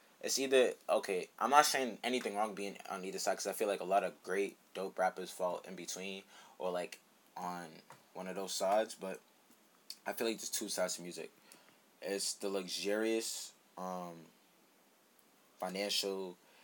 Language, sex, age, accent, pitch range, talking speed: English, male, 20-39, American, 90-120 Hz, 165 wpm